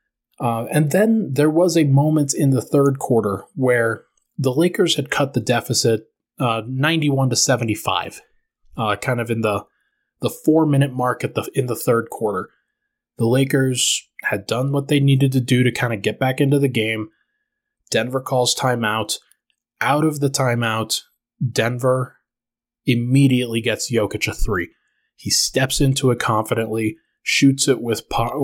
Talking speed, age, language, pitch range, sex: 160 wpm, 20-39, English, 115-145 Hz, male